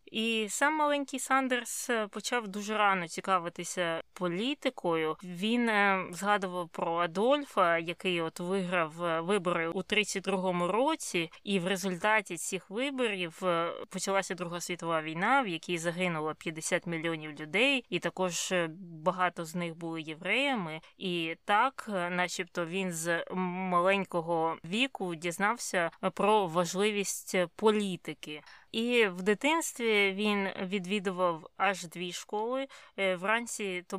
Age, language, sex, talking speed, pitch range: 20-39, Ukrainian, female, 110 wpm, 175-220 Hz